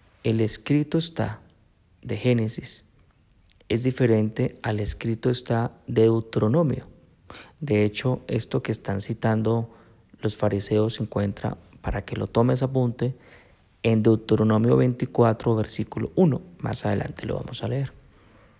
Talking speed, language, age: 125 wpm, Spanish, 30-49